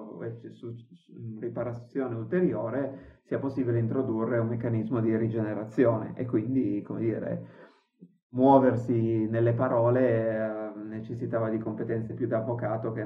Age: 30-49